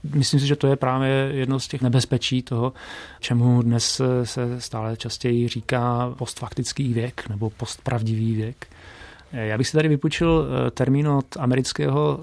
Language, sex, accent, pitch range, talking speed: Czech, male, native, 120-135 Hz, 145 wpm